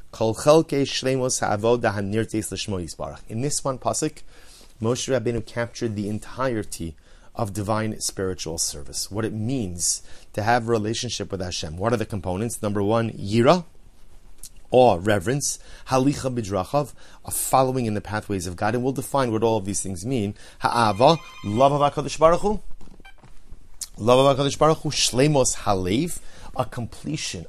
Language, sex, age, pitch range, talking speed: English, male, 30-49, 100-130 Hz, 125 wpm